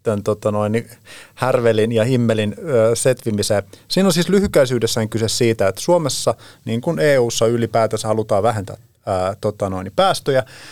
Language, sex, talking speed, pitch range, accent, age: Finnish, male, 110 wpm, 105-130 Hz, native, 30-49